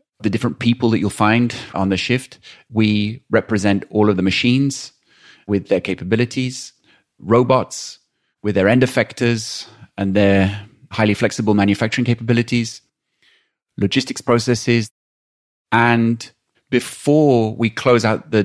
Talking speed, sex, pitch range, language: 120 wpm, male, 105-120 Hz, English